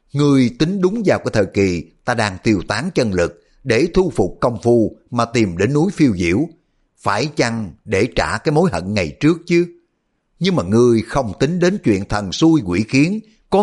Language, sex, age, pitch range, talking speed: Vietnamese, male, 60-79, 100-160 Hz, 205 wpm